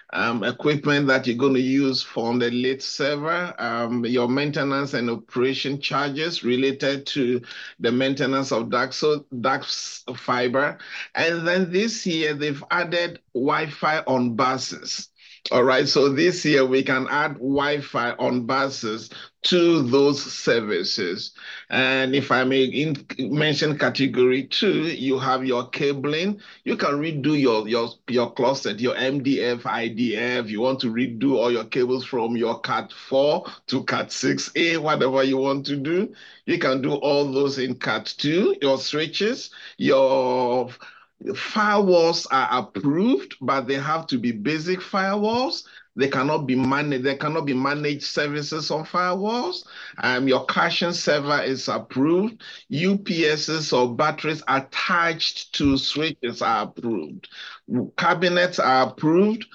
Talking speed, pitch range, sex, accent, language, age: 140 wpm, 130-160 Hz, male, Nigerian, English, 50-69